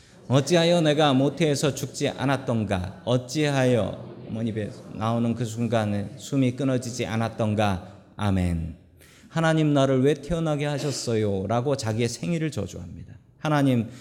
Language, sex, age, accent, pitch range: Korean, male, 40-59, native, 120-190 Hz